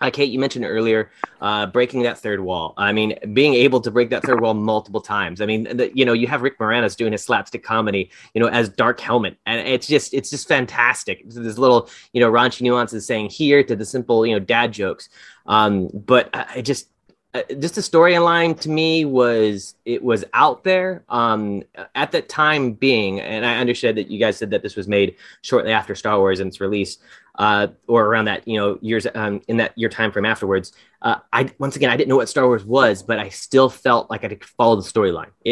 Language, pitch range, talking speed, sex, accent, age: English, 110-135 Hz, 225 wpm, male, American, 20-39